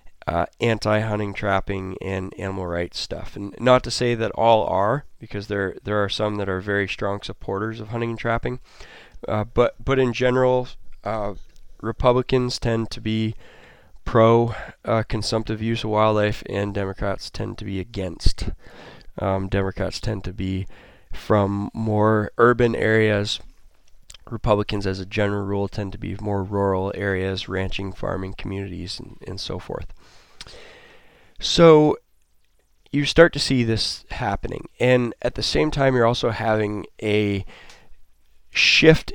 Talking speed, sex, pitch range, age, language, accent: 145 wpm, male, 95-115 Hz, 20-39, English, American